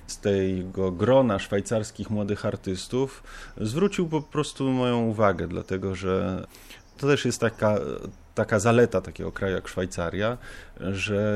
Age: 30-49